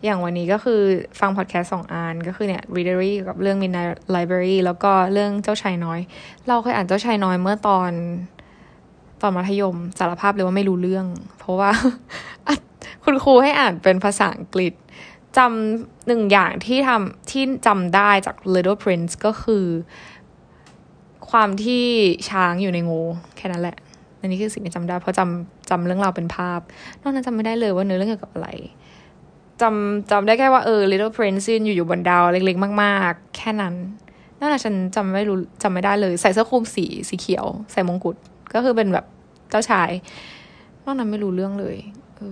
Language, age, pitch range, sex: Thai, 10-29, 180-220 Hz, female